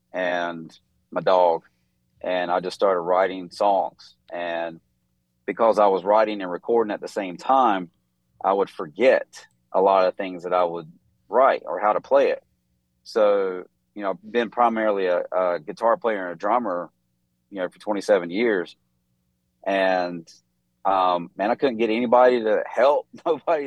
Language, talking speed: English, 160 wpm